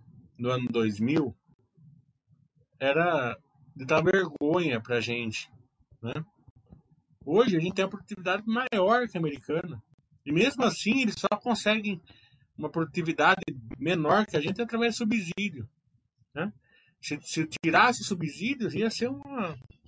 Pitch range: 120-165 Hz